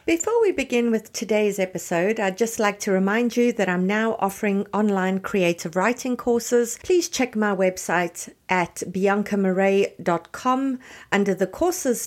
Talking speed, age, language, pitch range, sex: 145 wpm, 50-69, English, 185-240 Hz, female